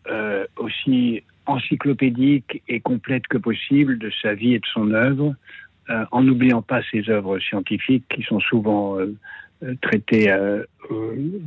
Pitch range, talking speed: 105-125 Hz, 140 wpm